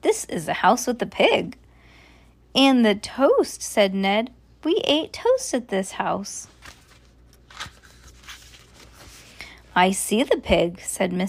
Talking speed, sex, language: 120 wpm, female, English